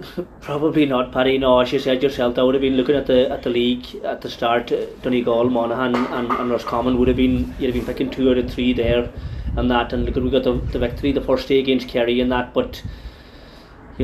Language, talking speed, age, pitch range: English, 240 wpm, 20-39, 125-140 Hz